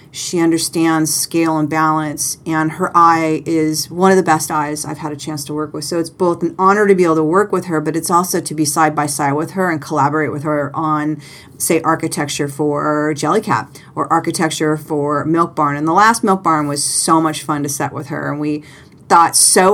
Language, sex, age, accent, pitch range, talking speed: English, female, 40-59, American, 150-190 Hz, 230 wpm